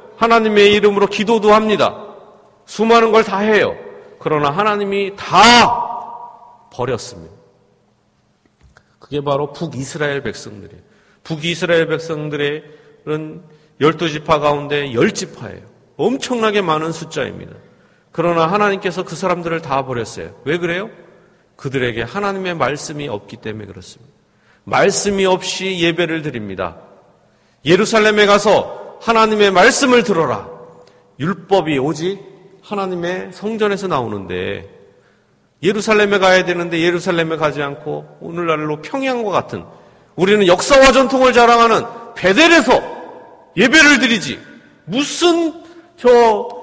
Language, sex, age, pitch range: Korean, male, 40-59, 155-225 Hz